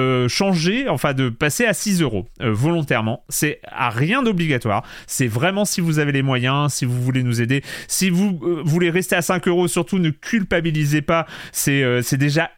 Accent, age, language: French, 30-49, French